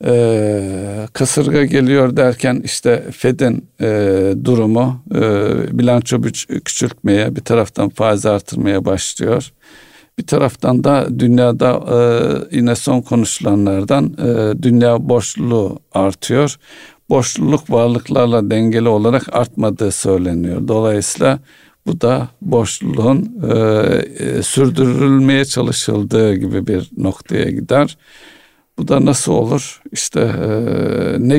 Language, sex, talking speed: Turkish, male, 100 wpm